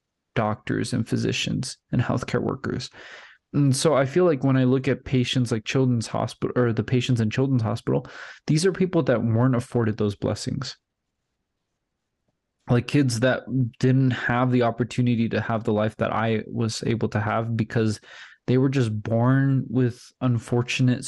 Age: 20-39